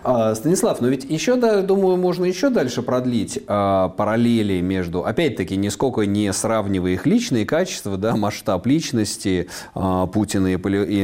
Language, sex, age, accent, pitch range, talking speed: Russian, male, 30-49, native, 95-135 Hz, 145 wpm